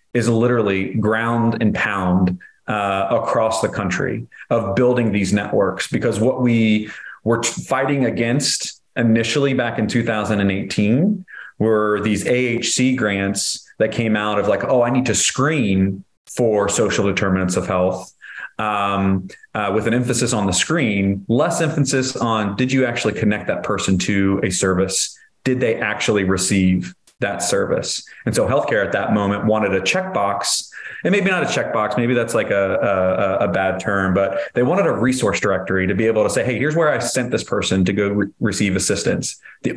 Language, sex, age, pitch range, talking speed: English, male, 30-49, 100-120 Hz, 170 wpm